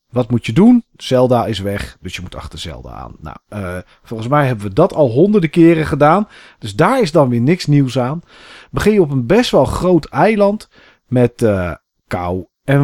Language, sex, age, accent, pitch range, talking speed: Dutch, male, 40-59, Dutch, 115-155 Hz, 205 wpm